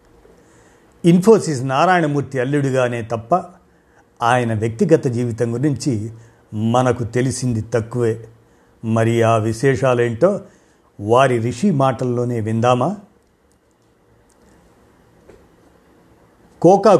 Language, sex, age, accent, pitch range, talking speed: Telugu, male, 50-69, native, 120-155 Hz, 65 wpm